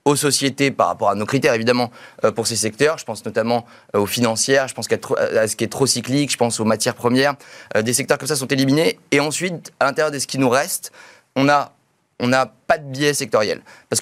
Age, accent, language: 30-49, French, French